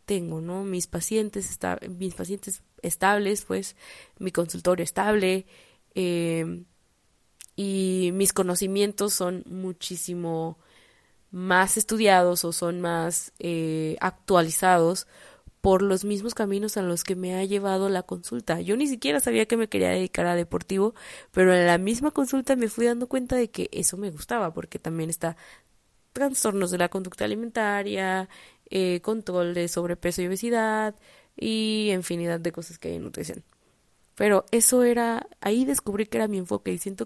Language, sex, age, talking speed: Spanish, female, 20-39, 150 wpm